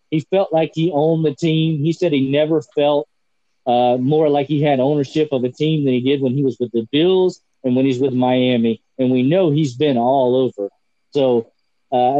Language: English